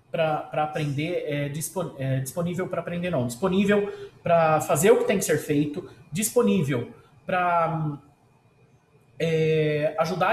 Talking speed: 105 wpm